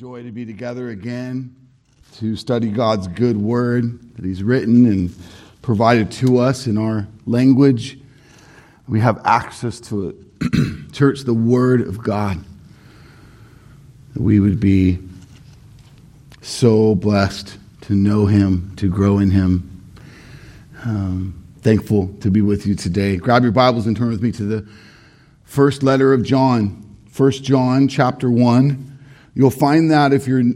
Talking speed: 140 wpm